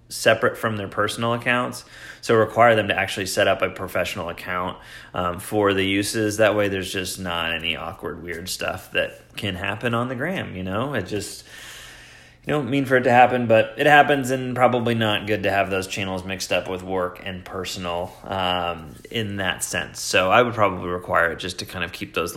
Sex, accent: male, American